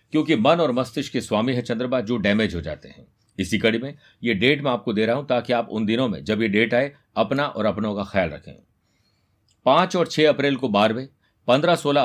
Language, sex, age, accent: Hindi, male, 50-69, native